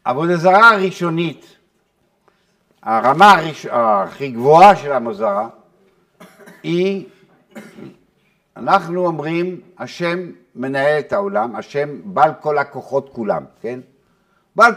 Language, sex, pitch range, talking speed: Hebrew, male, 150-200 Hz, 100 wpm